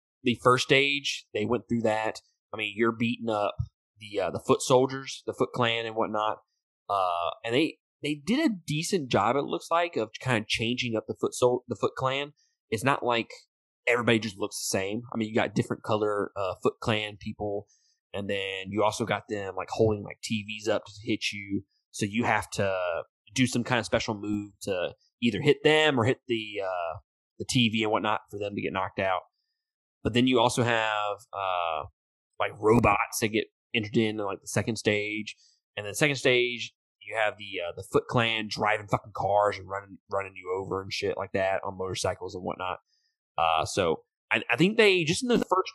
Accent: American